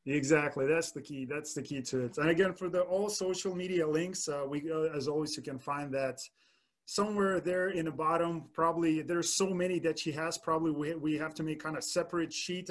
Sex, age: male, 30-49